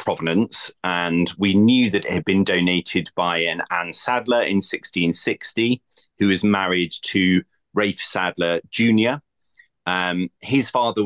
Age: 30-49